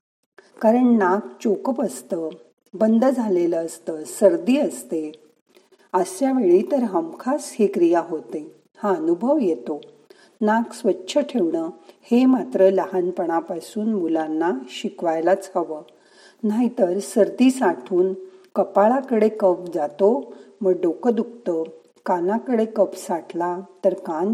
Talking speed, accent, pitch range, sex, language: 105 wpm, native, 175-230 Hz, female, Marathi